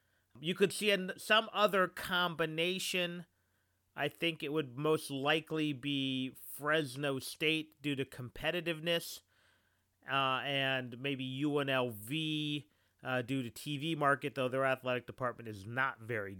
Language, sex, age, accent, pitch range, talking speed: English, male, 40-59, American, 120-165 Hz, 125 wpm